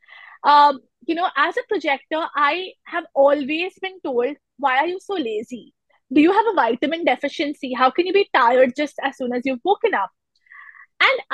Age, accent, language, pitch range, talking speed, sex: 20-39, Indian, English, 265-365 Hz, 185 wpm, female